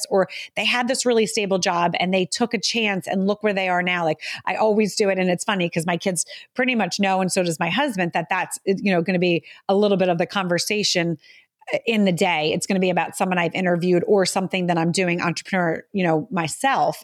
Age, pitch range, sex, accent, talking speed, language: 30-49, 175-210 Hz, female, American, 245 wpm, English